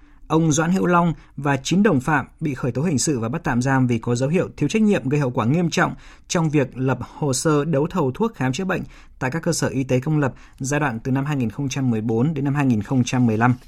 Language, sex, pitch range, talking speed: Vietnamese, male, 120-150 Hz, 245 wpm